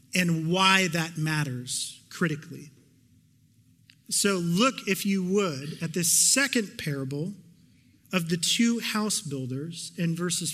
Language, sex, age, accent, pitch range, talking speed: English, male, 40-59, American, 145-200 Hz, 120 wpm